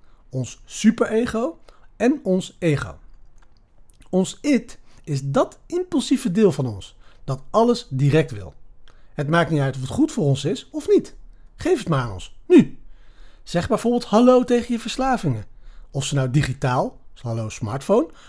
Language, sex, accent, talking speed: Dutch, male, Dutch, 155 wpm